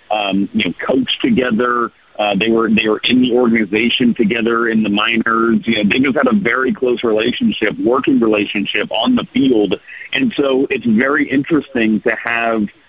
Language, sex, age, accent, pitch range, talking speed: English, male, 50-69, American, 105-120 Hz, 175 wpm